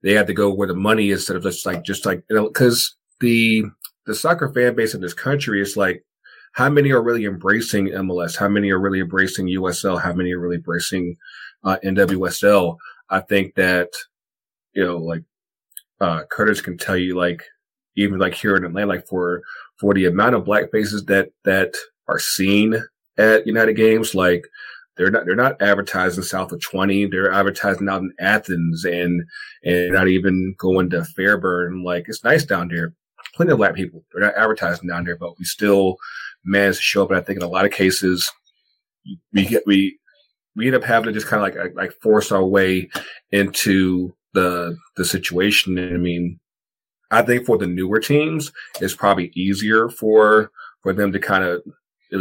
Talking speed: 190 wpm